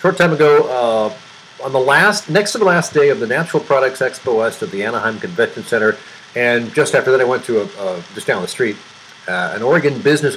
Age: 50-69